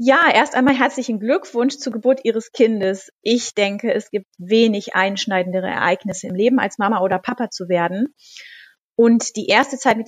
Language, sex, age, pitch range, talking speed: German, female, 30-49, 205-255 Hz, 175 wpm